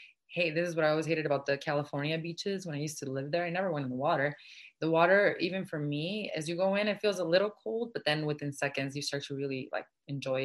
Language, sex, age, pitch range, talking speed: English, female, 20-39, 140-165 Hz, 270 wpm